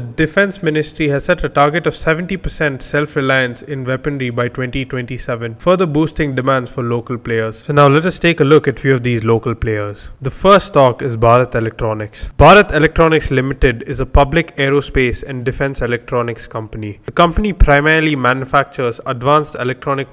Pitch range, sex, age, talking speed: 125-150 Hz, male, 20-39, 165 wpm